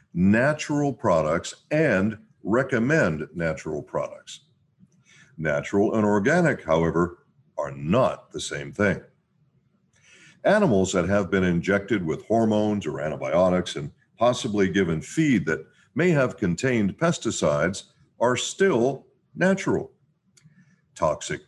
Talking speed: 105 wpm